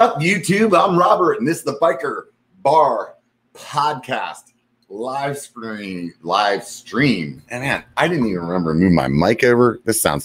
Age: 30-49